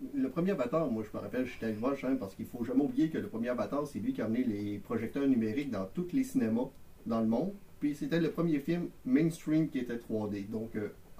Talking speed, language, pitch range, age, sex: 245 wpm, French, 120-185 Hz, 40-59, male